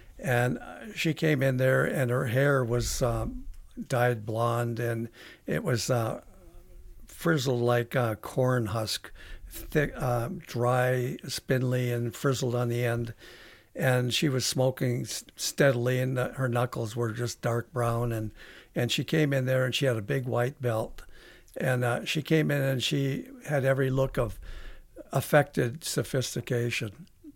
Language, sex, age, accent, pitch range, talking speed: English, male, 60-79, American, 120-135 Hz, 150 wpm